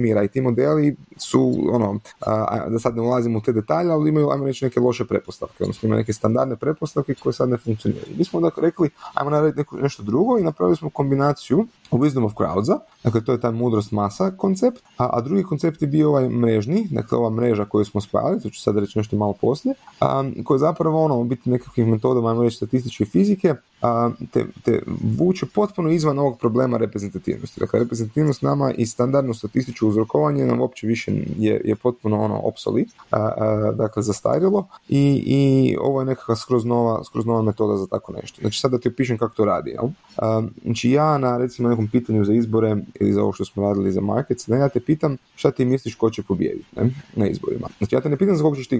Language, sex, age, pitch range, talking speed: Croatian, male, 30-49, 110-140 Hz, 205 wpm